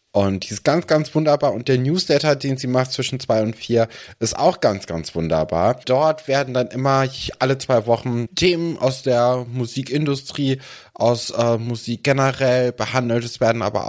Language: German